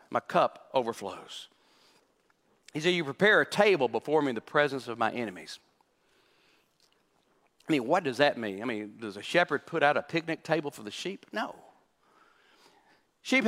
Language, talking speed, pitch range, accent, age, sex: English, 170 wpm, 135-200 Hz, American, 50-69, male